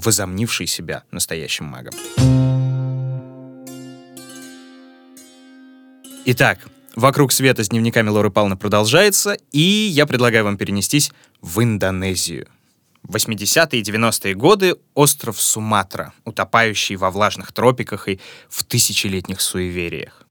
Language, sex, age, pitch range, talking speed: Russian, male, 20-39, 100-145 Hz, 100 wpm